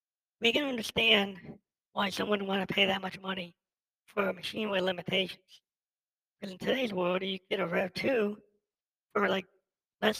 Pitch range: 190-225 Hz